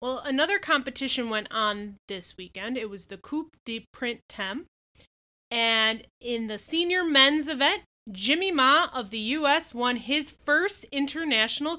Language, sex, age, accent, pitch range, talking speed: English, female, 20-39, American, 230-305 Hz, 145 wpm